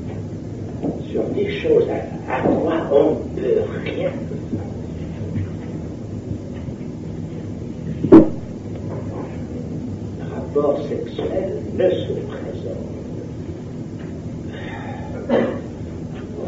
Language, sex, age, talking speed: German, male, 60-79, 60 wpm